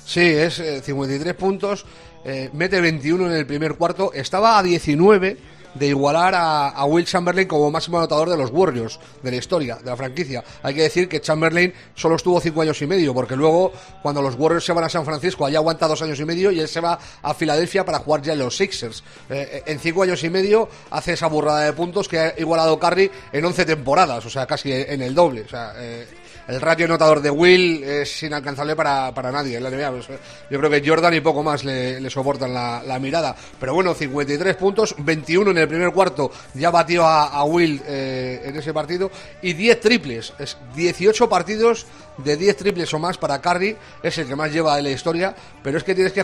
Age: 40-59